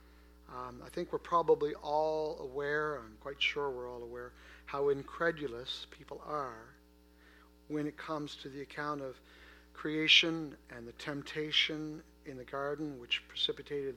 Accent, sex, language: American, male, English